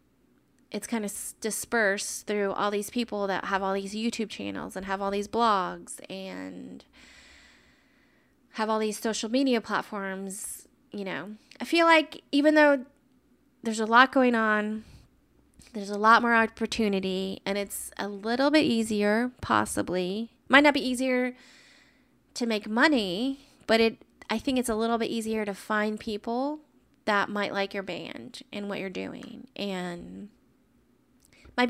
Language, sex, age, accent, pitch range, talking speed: English, female, 20-39, American, 205-255 Hz, 155 wpm